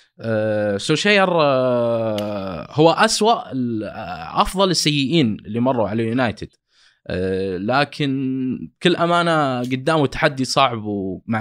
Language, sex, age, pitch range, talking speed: Arabic, male, 20-39, 115-145 Hz, 100 wpm